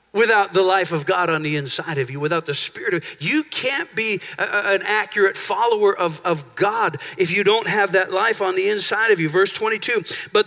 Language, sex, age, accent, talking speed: English, male, 50-69, American, 220 wpm